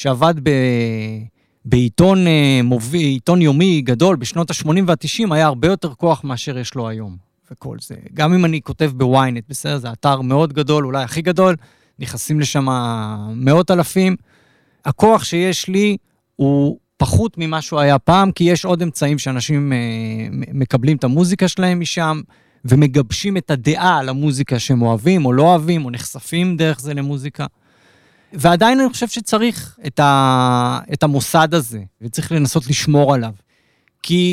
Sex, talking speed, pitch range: male, 145 wpm, 130-175 Hz